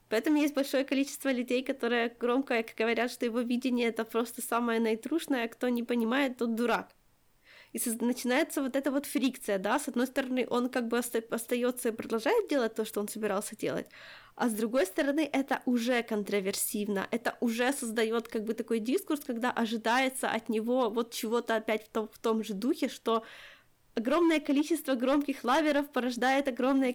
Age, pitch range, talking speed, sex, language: 20-39, 230-275 Hz, 165 wpm, female, Ukrainian